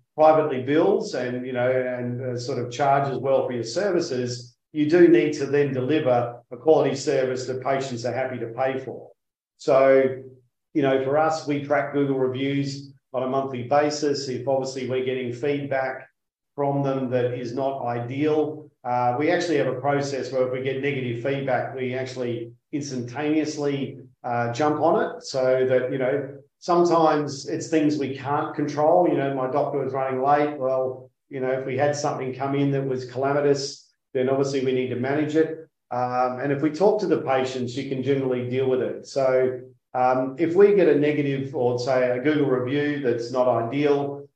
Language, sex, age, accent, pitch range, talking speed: English, male, 40-59, Australian, 125-145 Hz, 185 wpm